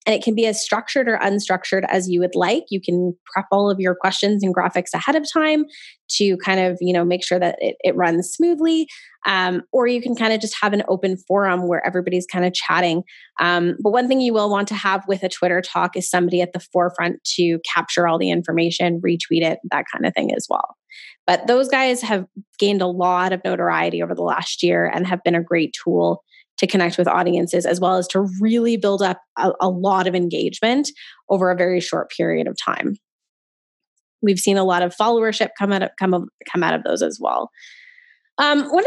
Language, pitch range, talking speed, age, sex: English, 180-235 Hz, 220 wpm, 20-39, female